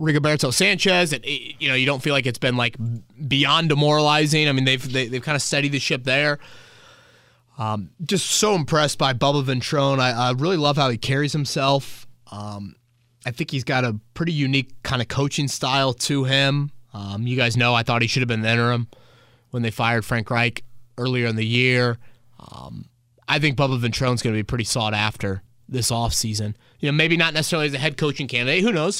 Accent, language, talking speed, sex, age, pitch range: American, English, 205 wpm, male, 20-39, 120-150 Hz